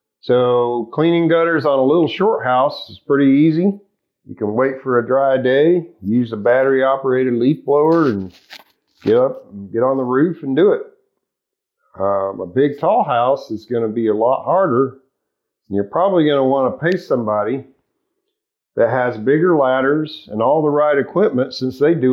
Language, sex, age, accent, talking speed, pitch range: English, male, 50-69, American, 180 wpm, 125-165 Hz